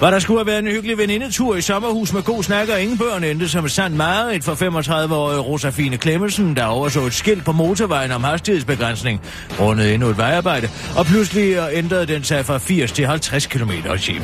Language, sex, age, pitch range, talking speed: Danish, male, 30-49, 125-175 Hz, 200 wpm